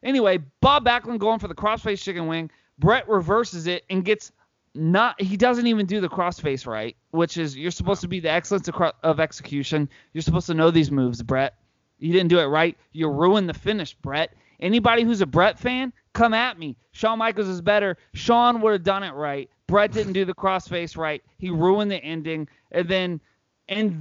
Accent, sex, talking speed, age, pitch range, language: American, male, 200 wpm, 30-49, 165-225 Hz, English